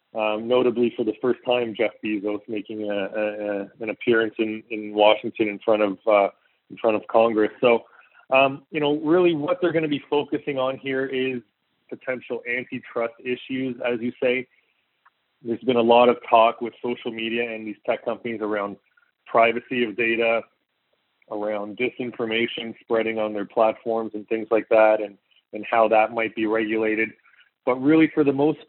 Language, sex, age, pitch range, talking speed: English, male, 20-39, 110-125 Hz, 170 wpm